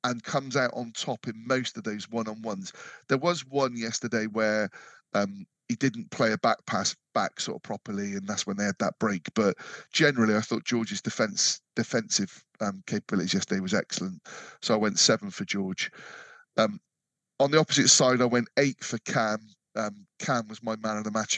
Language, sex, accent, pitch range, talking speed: English, male, British, 105-135 Hz, 195 wpm